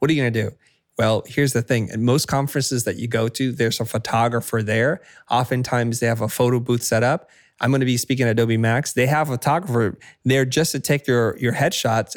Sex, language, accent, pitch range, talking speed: male, English, American, 115-135 Hz, 230 wpm